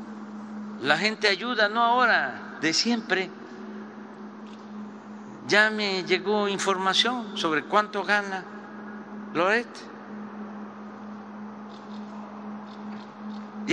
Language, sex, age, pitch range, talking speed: Spanish, male, 50-69, 180-220 Hz, 70 wpm